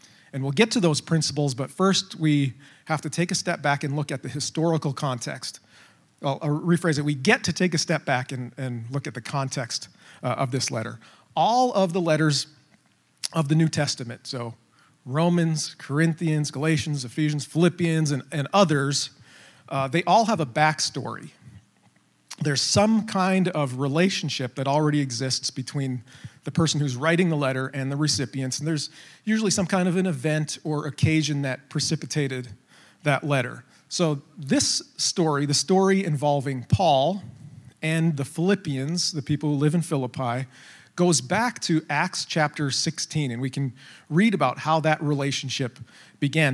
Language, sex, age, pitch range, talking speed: English, male, 40-59, 135-165 Hz, 165 wpm